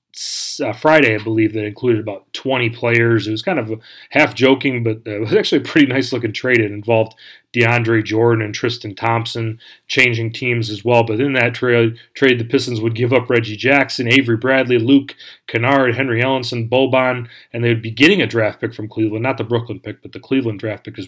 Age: 30-49